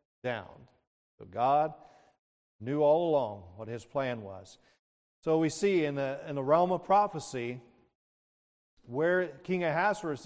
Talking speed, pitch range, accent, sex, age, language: 135 wpm, 120-155 Hz, American, male, 40-59, English